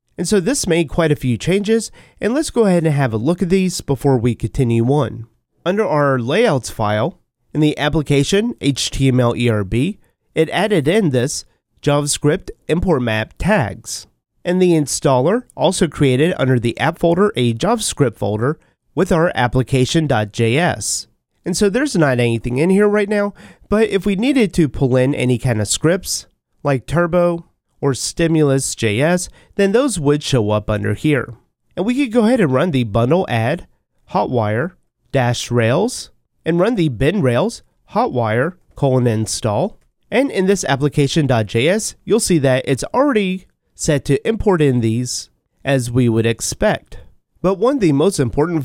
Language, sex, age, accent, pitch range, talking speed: English, male, 30-49, American, 125-180 Hz, 160 wpm